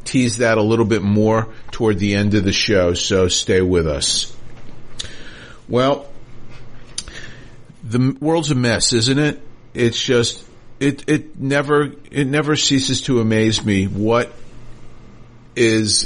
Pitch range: 110-125 Hz